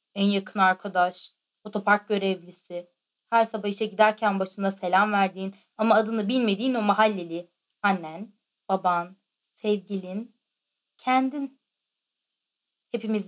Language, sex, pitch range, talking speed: Turkish, female, 195-235 Hz, 100 wpm